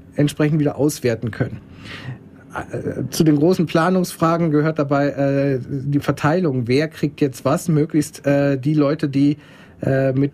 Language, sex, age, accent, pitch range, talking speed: German, male, 40-59, German, 140-170 Hz, 140 wpm